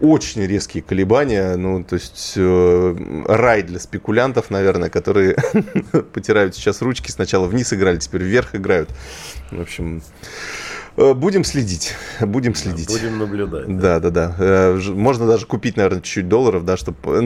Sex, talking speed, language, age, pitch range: male, 125 wpm, Russian, 20-39, 90-115 Hz